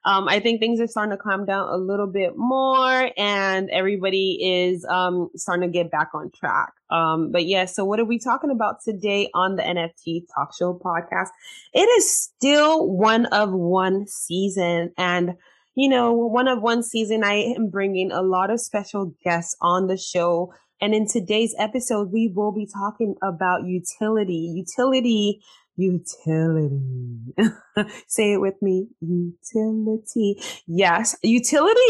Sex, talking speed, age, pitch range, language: female, 155 wpm, 20-39, 180-225 Hz, English